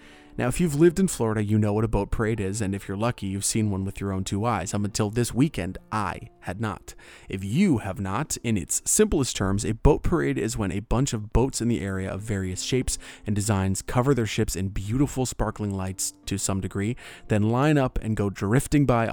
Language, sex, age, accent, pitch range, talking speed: English, male, 30-49, American, 100-120 Hz, 230 wpm